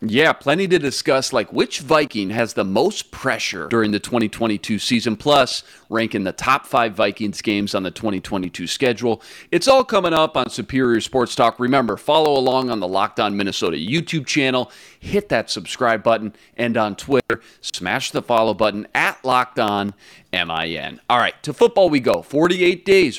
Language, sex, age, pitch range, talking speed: English, male, 40-59, 105-145 Hz, 175 wpm